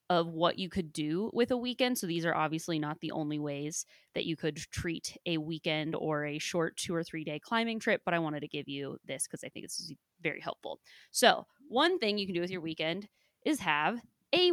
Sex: female